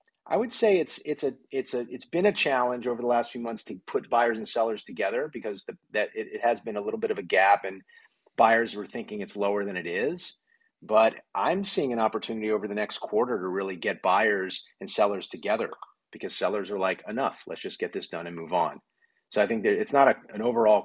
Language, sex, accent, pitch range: English, male, American, 105-130 Hz